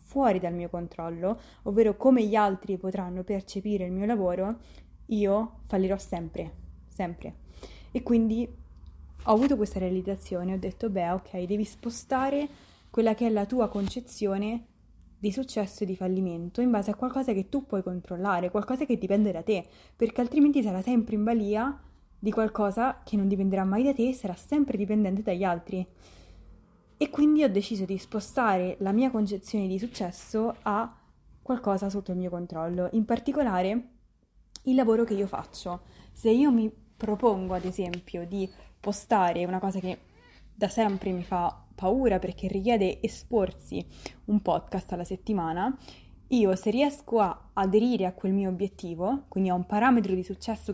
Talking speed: 160 wpm